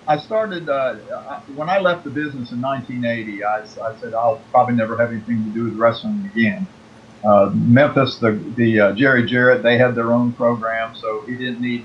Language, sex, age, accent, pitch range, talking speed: English, male, 50-69, American, 110-135 Hz, 195 wpm